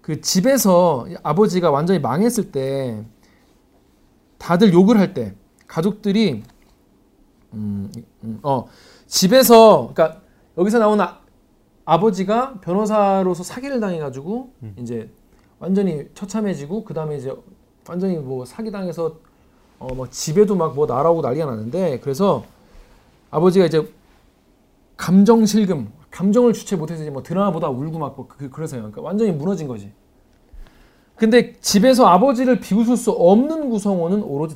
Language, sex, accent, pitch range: Korean, male, native, 140-225 Hz